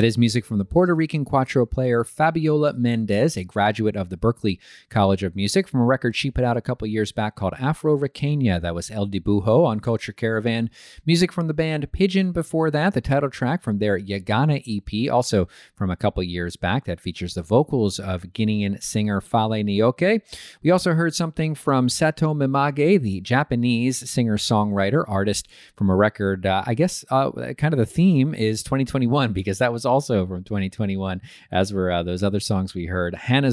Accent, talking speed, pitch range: American, 195 wpm, 100-140 Hz